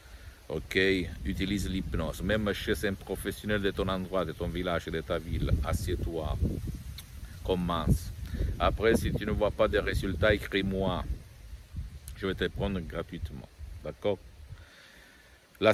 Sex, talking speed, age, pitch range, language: male, 130 wpm, 50-69, 80-100 Hz, Italian